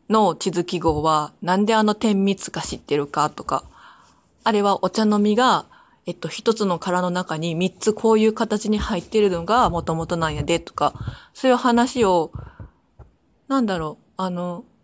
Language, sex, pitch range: Japanese, female, 170-225 Hz